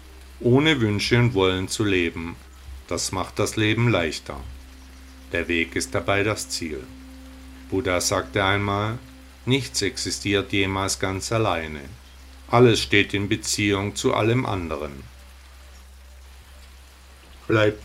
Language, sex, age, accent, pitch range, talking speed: German, male, 50-69, German, 70-115 Hz, 110 wpm